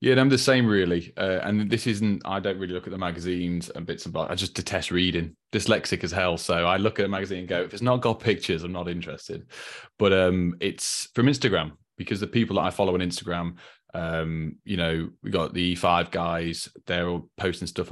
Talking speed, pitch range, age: 220 wpm, 85-105 Hz, 20-39